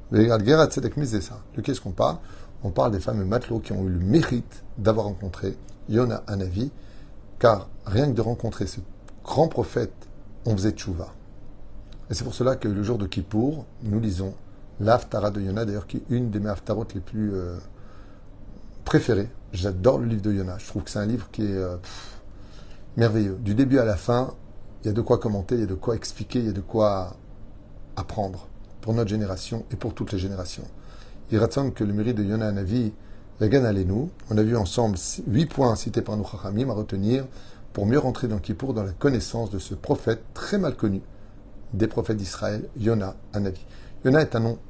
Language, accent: French, French